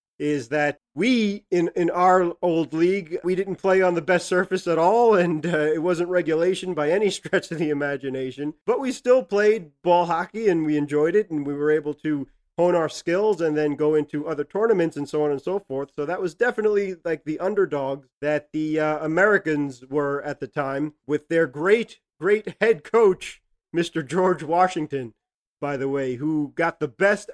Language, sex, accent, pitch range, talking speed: English, male, American, 145-185 Hz, 195 wpm